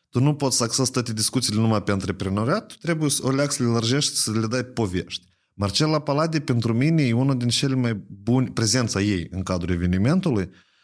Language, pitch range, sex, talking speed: Romanian, 100-135 Hz, male, 200 wpm